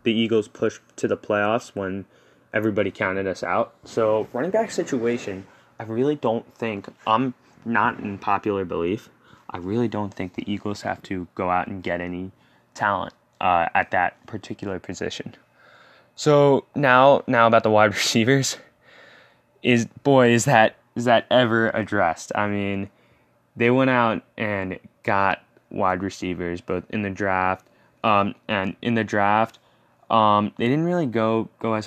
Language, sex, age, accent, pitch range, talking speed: English, male, 10-29, American, 100-120 Hz, 155 wpm